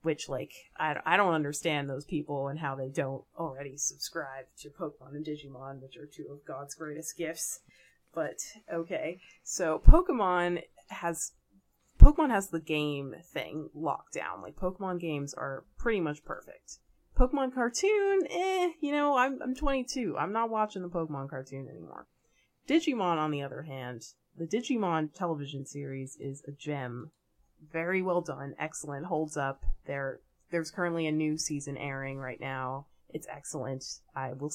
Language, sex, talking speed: English, female, 155 wpm